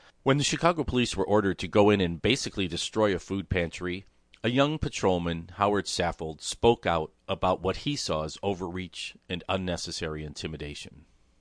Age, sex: 50-69, male